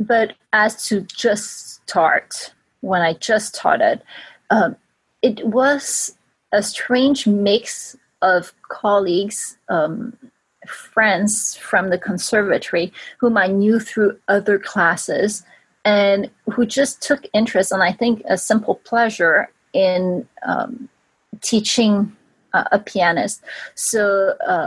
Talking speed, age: 115 wpm, 30-49